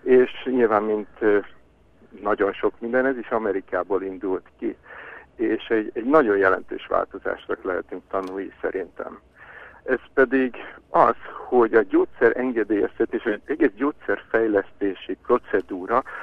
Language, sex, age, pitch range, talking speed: Hungarian, male, 60-79, 110-165 Hz, 115 wpm